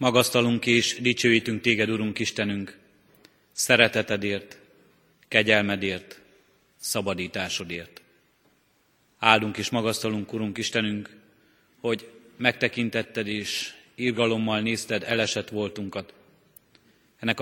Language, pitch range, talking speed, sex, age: Hungarian, 105-120 Hz, 75 wpm, male, 30-49